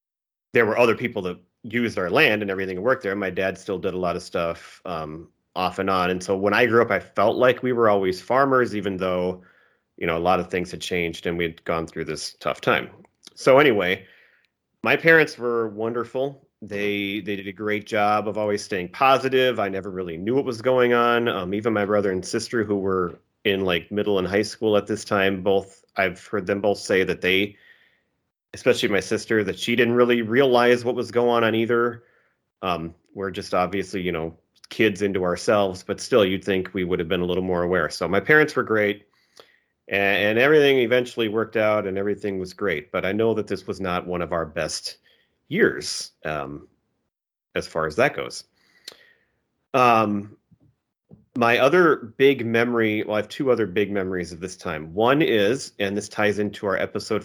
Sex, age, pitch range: male, 30-49, 95-115 Hz